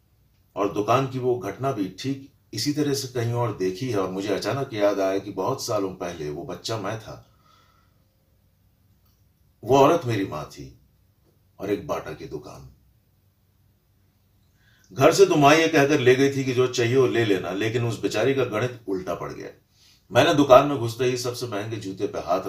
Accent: native